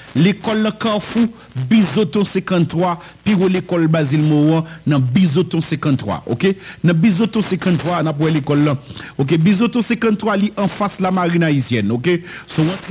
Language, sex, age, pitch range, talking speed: English, male, 50-69, 155-195 Hz, 140 wpm